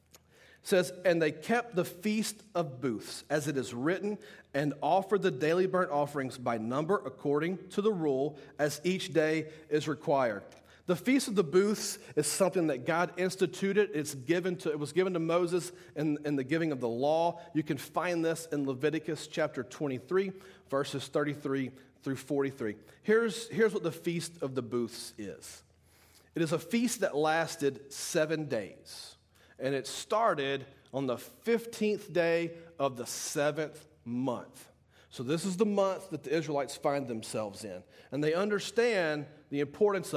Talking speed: 165 wpm